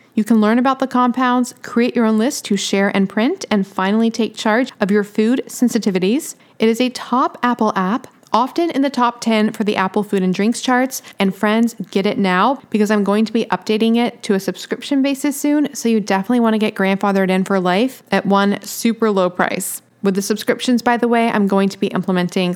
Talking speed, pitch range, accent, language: 220 wpm, 200-245 Hz, American, English